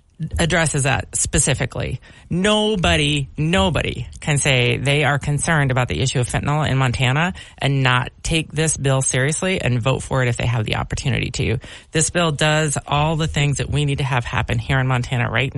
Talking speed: 190 wpm